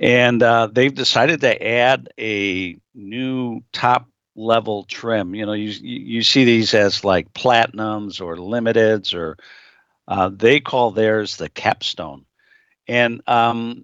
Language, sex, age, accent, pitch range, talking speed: English, male, 60-79, American, 105-125 Hz, 135 wpm